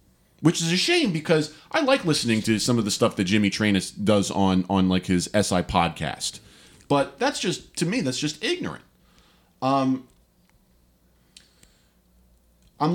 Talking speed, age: 155 wpm, 40-59